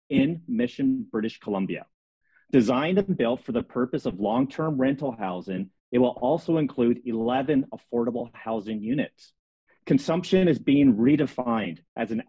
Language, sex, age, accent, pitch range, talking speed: English, male, 30-49, American, 125-185 Hz, 135 wpm